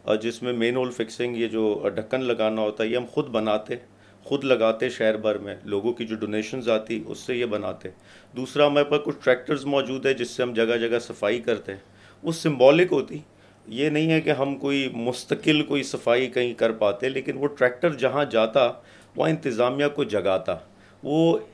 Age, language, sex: 40-59, Urdu, male